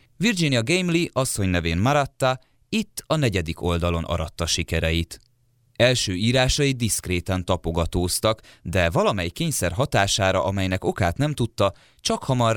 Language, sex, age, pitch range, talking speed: Hungarian, male, 20-39, 90-120 Hz, 120 wpm